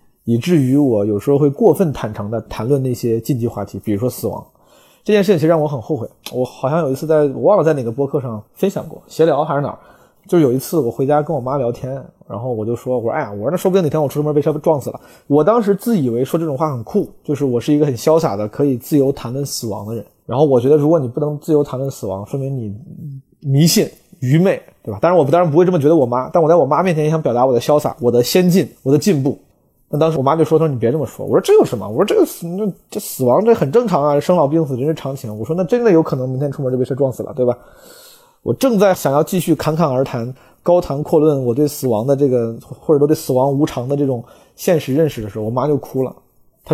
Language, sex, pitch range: Chinese, male, 125-160 Hz